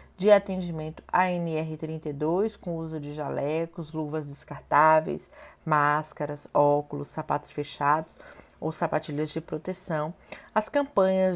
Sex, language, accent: female, Portuguese, Brazilian